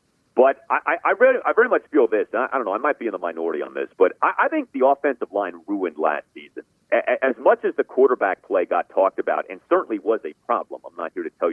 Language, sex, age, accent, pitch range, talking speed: English, male, 40-59, American, 315-430 Hz, 265 wpm